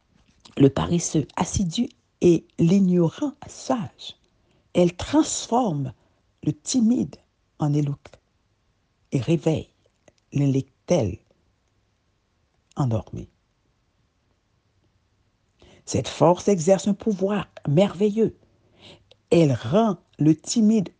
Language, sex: French, female